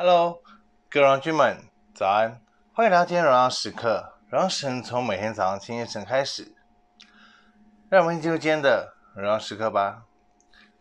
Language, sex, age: Chinese, male, 20-39